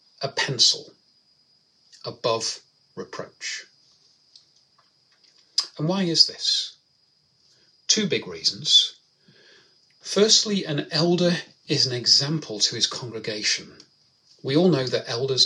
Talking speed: 95 wpm